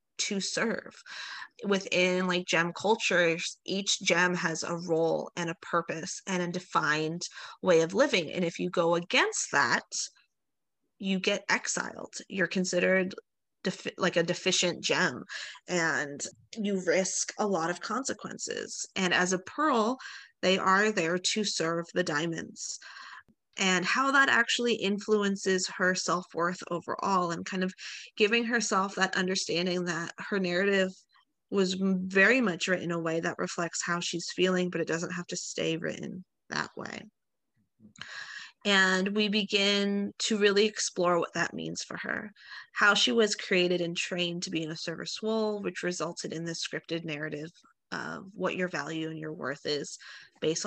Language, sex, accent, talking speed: English, female, American, 155 wpm